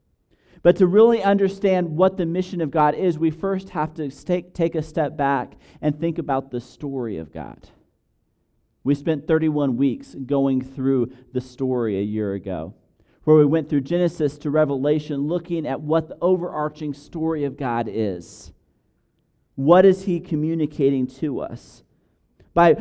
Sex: male